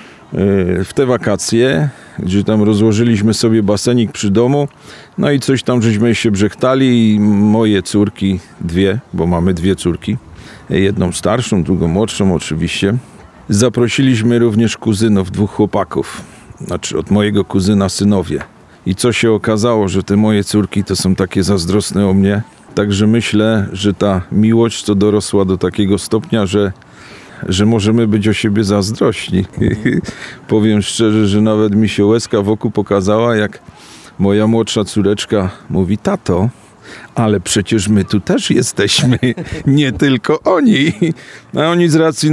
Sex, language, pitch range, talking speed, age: male, Polish, 100-120 Hz, 140 wpm, 40-59